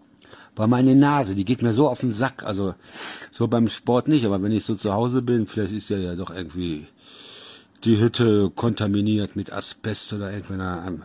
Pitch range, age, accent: 100-135 Hz, 60-79, German